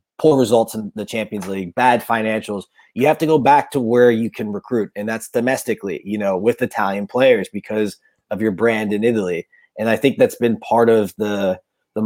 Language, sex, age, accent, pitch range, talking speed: English, male, 20-39, American, 105-125 Hz, 205 wpm